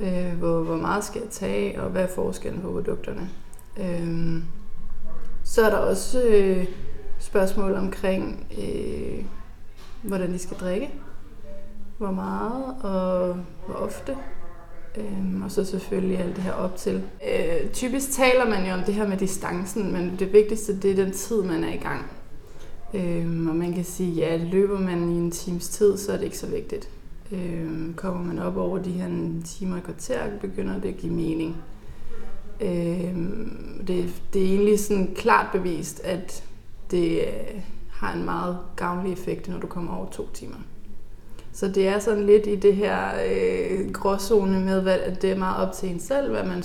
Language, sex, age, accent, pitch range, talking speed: Danish, female, 20-39, native, 170-200 Hz, 160 wpm